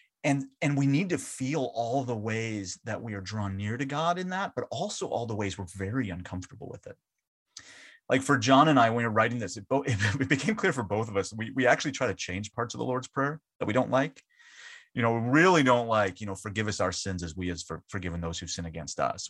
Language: English